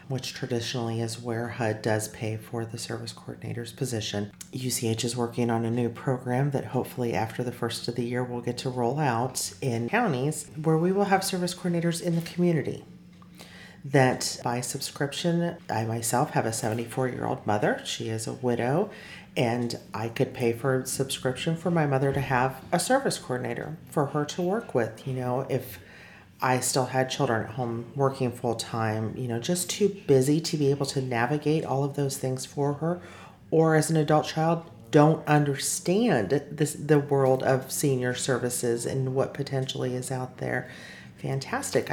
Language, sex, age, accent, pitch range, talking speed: English, female, 40-59, American, 120-150 Hz, 175 wpm